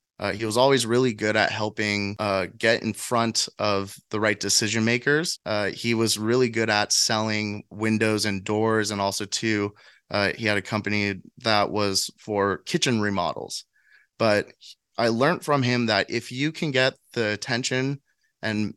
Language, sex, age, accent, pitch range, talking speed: English, male, 20-39, American, 105-125 Hz, 170 wpm